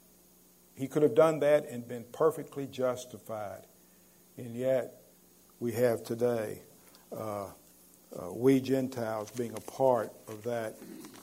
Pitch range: 115-145 Hz